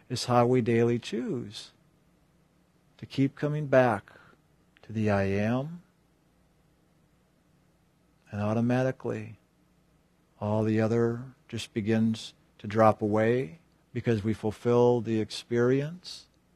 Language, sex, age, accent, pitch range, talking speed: English, male, 50-69, American, 115-160 Hz, 100 wpm